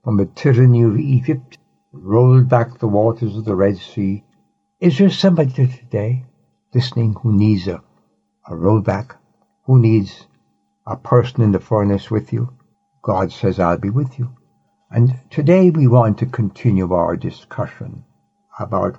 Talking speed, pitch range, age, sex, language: 150 wpm, 105-140 Hz, 60-79, male, English